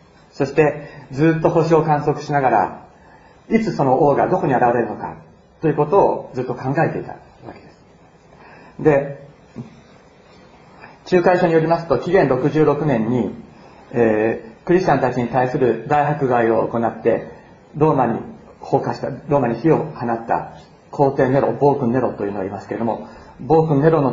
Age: 40-59